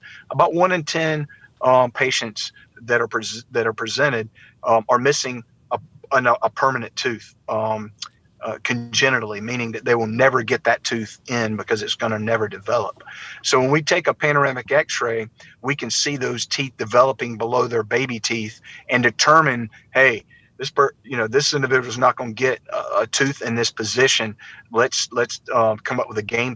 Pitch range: 115-140 Hz